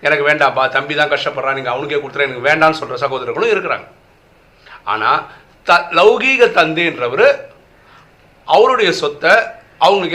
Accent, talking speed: native, 120 wpm